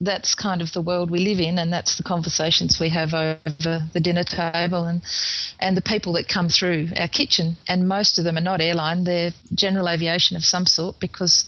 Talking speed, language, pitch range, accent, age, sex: 215 wpm, English, 175-210 Hz, Australian, 30-49, female